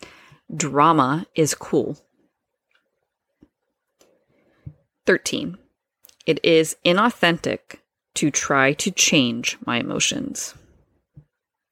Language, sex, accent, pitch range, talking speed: English, female, American, 140-235 Hz, 65 wpm